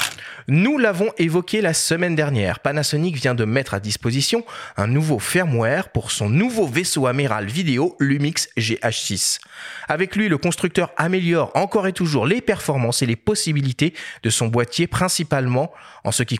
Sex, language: male, French